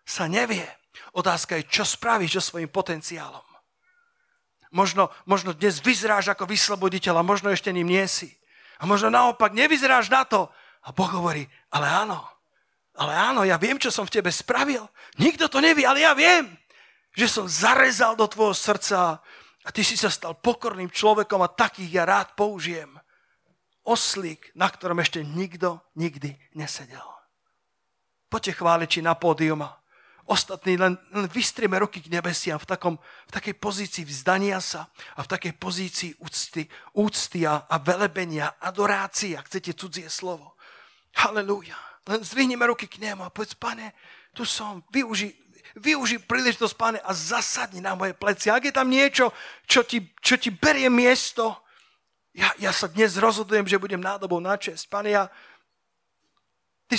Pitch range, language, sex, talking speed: 180-235 Hz, Slovak, male, 155 wpm